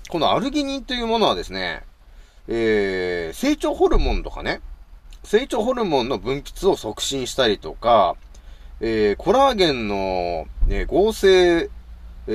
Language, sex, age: Japanese, male, 30-49